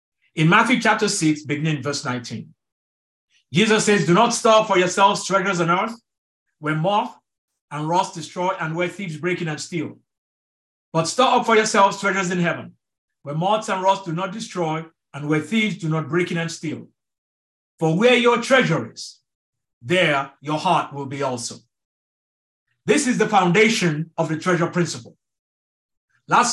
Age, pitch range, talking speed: 50-69, 155-215 Hz, 165 wpm